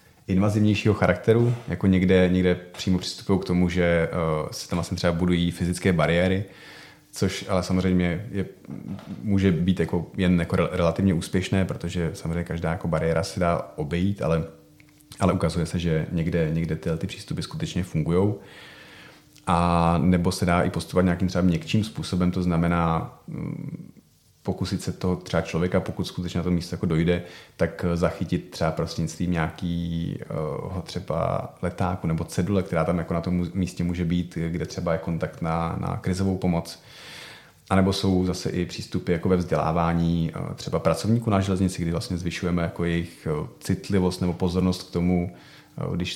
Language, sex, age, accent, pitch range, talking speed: Czech, male, 30-49, native, 85-95 Hz, 155 wpm